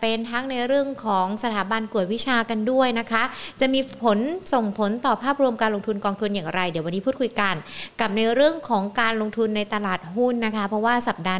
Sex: female